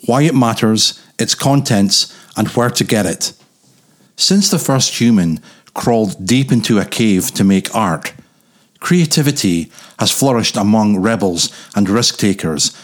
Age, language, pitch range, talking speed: 40-59, English, 100-130 Hz, 135 wpm